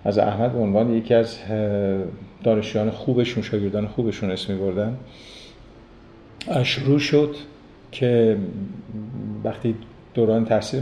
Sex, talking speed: male, 100 wpm